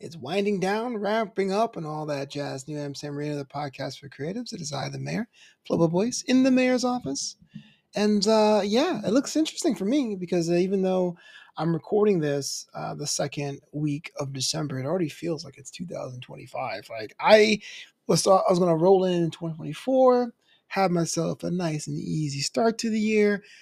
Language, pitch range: English, 145-210 Hz